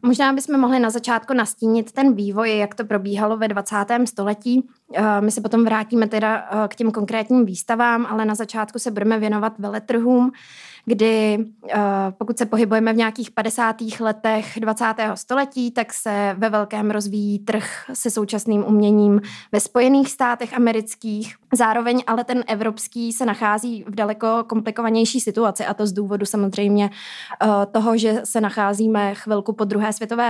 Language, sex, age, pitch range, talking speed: Czech, female, 20-39, 210-235 Hz, 150 wpm